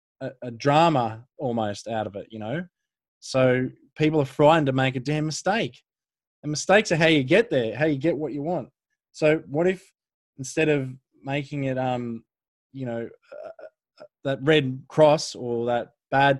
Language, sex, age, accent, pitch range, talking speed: English, male, 20-39, Australian, 130-150 Hz, 175 wpm